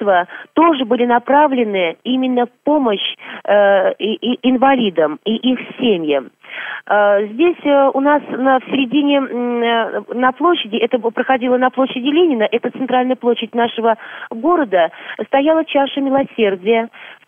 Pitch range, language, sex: 225-275 Hz, Russian, female